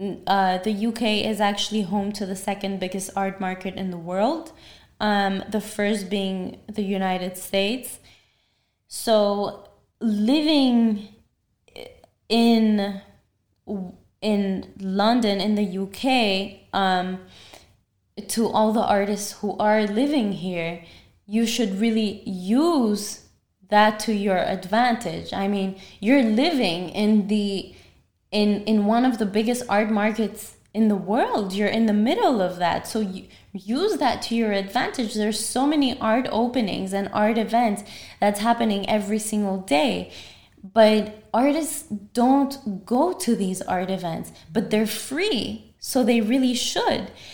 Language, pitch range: English, 195-225 Hz